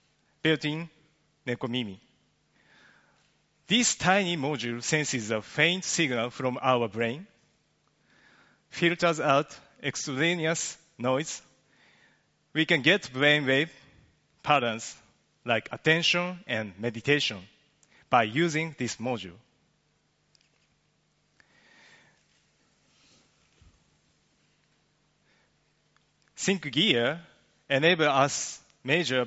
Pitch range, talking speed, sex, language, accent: 125-165 Hz, 70 wpm, male, English, Japanese